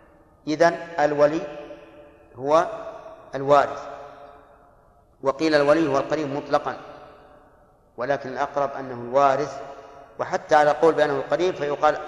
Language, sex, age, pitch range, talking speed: Arabic, male, 50-69, 140-160 Hz, 95 wpm